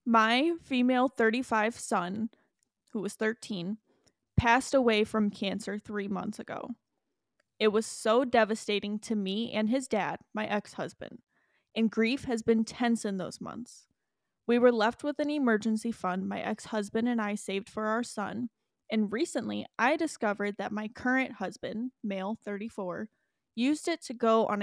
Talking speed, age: 155 wpm, 20-39